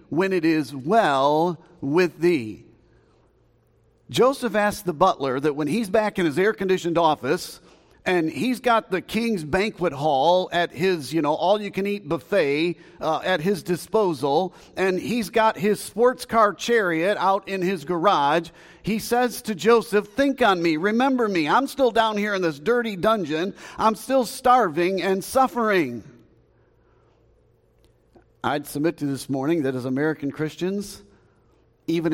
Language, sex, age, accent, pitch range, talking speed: English, male, 50-69, American, 120-185 Hz, 155 wpm